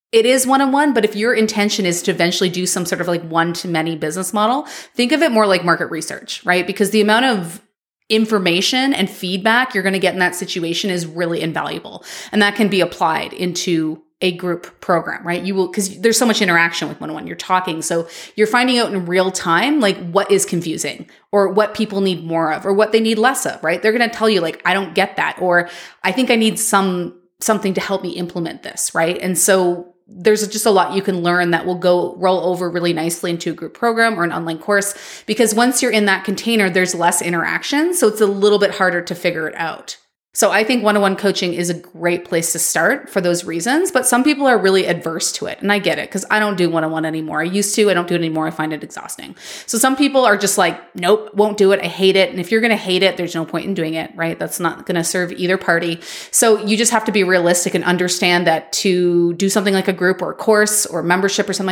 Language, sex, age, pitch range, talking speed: English, female, 30-49, 175-215 Hz, 250 wpm